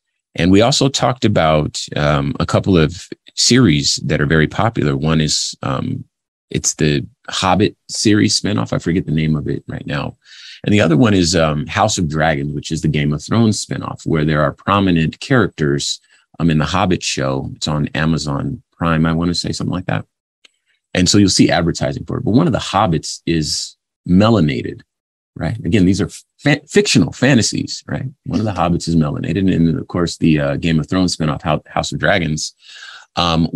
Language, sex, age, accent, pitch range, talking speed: English, male, 30-49, American, 75-95 Hz, 190 wpm